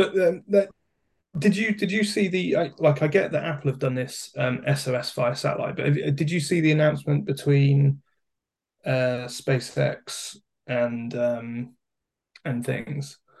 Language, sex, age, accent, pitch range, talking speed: English, male, 20-39, British, 125-145 Hz, 160 wpm